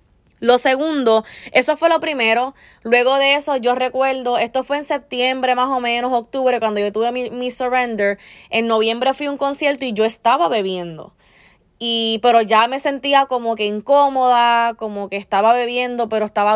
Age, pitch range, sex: 20-39, 210-250 Hz, female